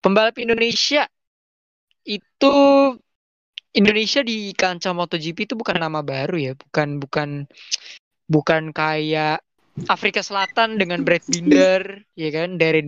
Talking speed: 110 wpm